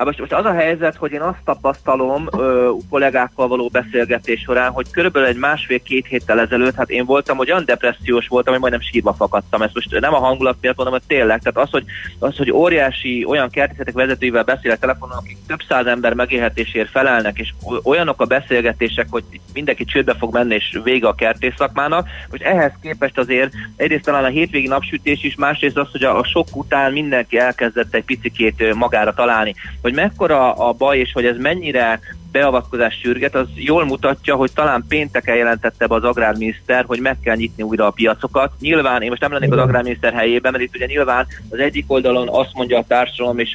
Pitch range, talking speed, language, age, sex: 115-135 Hz, 190 wpm, Hungarian, 30-49, male